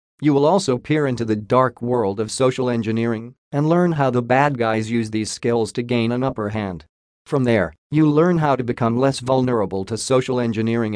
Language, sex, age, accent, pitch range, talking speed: English, male, 40-59, American, 110-135 Hz, 205 wpm